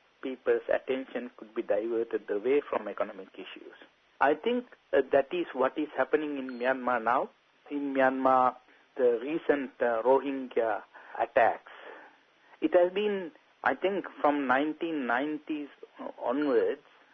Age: 50-69